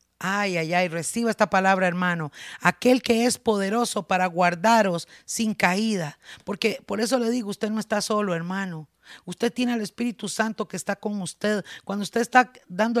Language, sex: Spanish, female